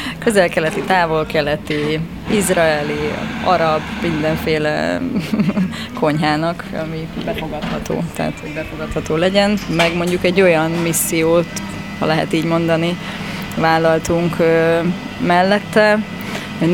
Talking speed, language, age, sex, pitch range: 80 wpm, Hungarian, 20-39, female, 160-180 Hz